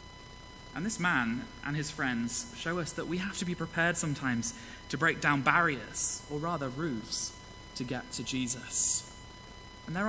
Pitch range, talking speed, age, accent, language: 115-160 Hz, 165 wpm, 20-39, British, English